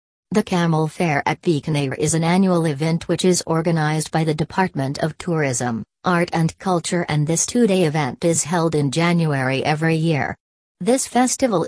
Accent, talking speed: American, 170 wpm